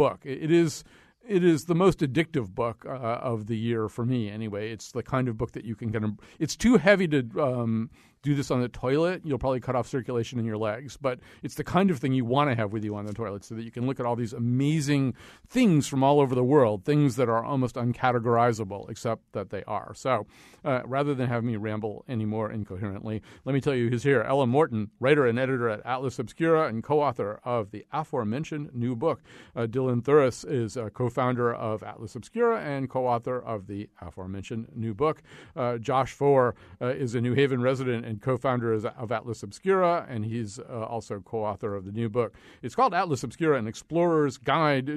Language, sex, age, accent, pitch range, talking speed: English, male, 50-69, American, 110-140 Hz, 215 wpm